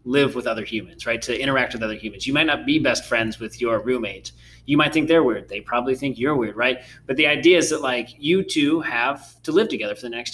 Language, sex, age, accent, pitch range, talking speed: English, male, 30-49, American, 115-165 Hz, 260 wpm